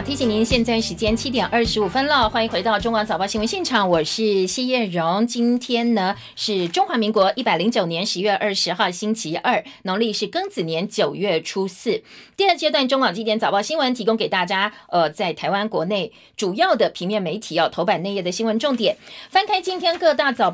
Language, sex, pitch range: Chinese, female, 195-240 Hz